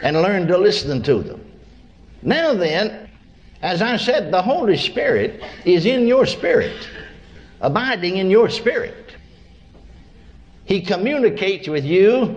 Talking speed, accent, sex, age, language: 125 wpm, American, male, 60-79, English